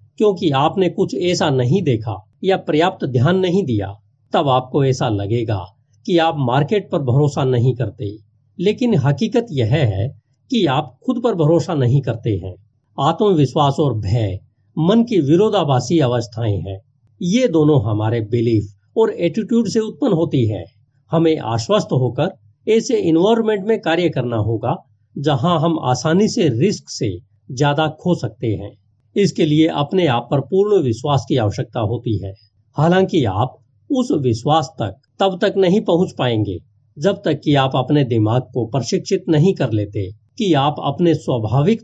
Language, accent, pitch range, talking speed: Hindi, native, 120-175 Hz, 155 wpm